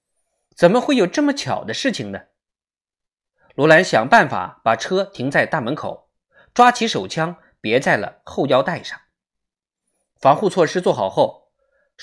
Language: Chinese